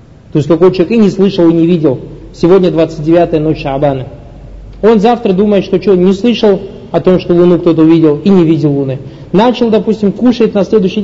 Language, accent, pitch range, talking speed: Russian, native, 155-195 Hz, 195 wpm